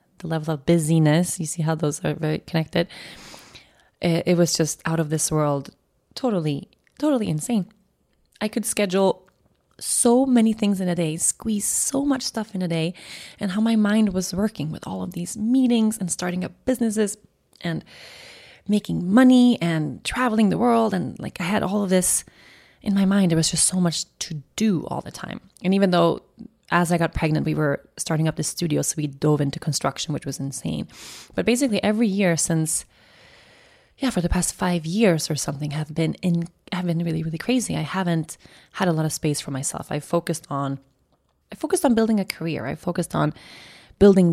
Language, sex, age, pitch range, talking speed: English, female, 20-39, 155-205 Hz, 195 wpm